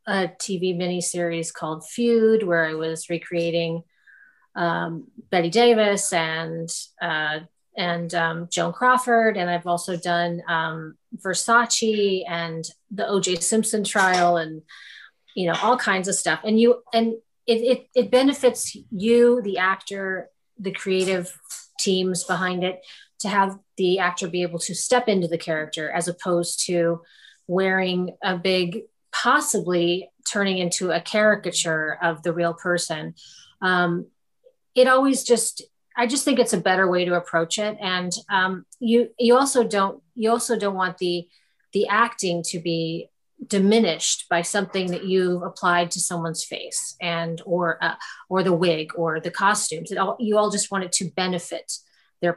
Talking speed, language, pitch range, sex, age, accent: 155 wpm, English, 170-210 Hz, female, 30-49, American